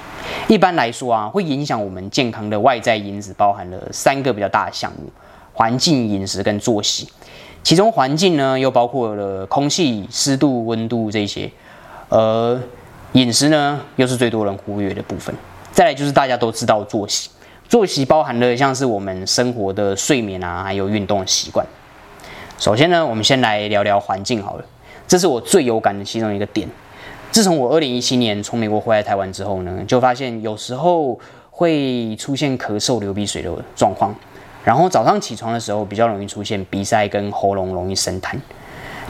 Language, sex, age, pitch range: Chinese, male, 20-39, 100-130 Hz